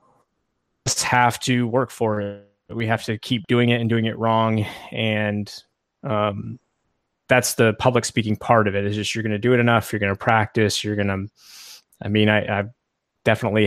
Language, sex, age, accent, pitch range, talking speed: English, male, 20-39, American, 105-130 Hz, 195 wpm